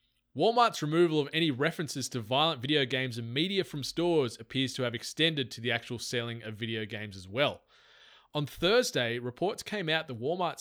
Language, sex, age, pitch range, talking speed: English, male, 20-39, 120-155 Hz, 185 wpm